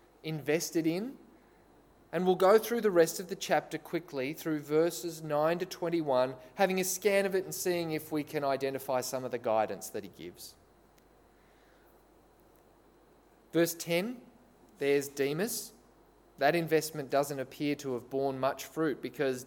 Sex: male